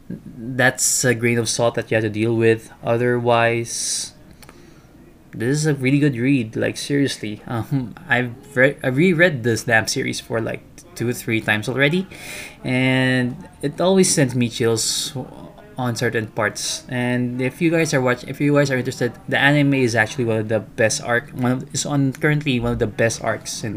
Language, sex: Filipino, male